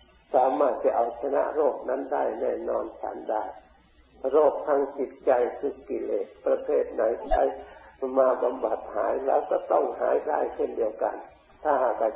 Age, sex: 50-69, male